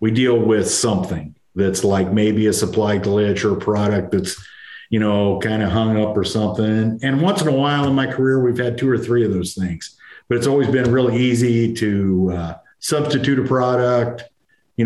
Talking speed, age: 200 wpm, 50-69